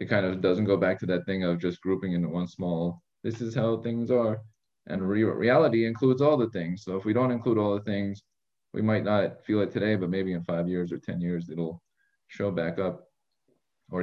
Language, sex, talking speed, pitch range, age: English, male, 230 wpm, 90-120 Hz, 20-39